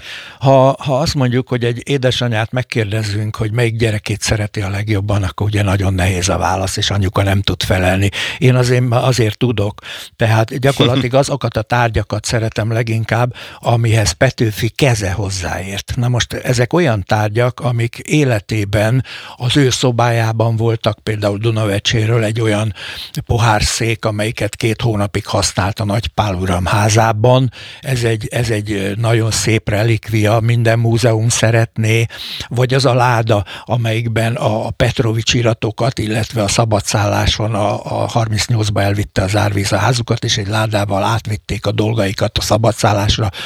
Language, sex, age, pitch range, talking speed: Hungarian, male, 60-79, 105-125 Hz, 140 wpm